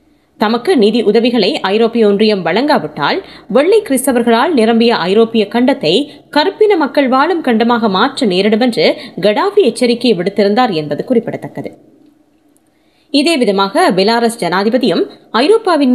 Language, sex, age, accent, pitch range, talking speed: Tamil, female, 20-39, native, 205-270 Hz, 100 wpm